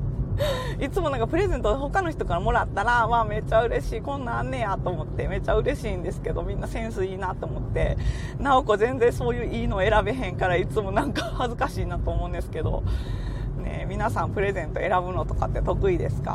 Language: Japanese